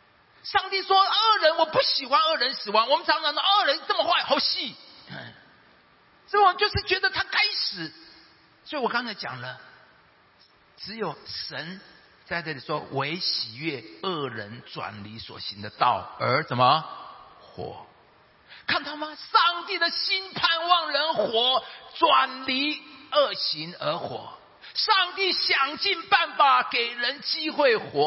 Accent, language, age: native, Chinese, 50-69